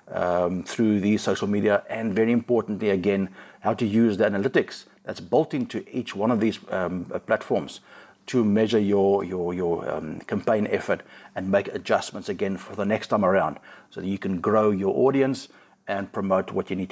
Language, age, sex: English, 60-79, male